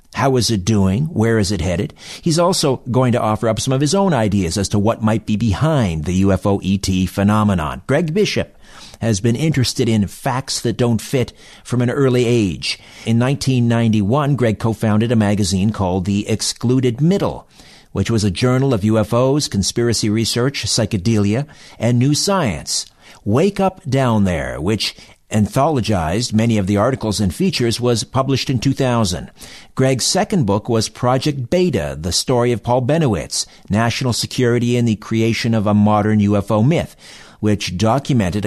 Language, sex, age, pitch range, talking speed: English, male, 50-69, 105-130 Hz, 160 wpm